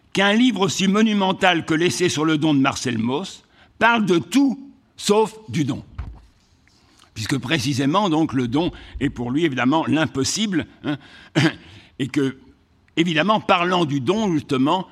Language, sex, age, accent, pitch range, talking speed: French, male, 60-79, French, 125-200 Hz, 145 wpm